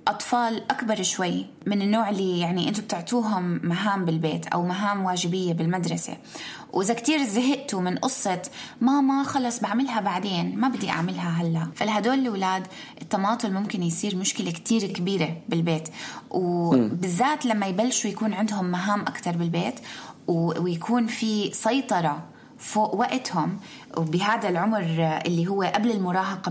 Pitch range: 175-235 Hz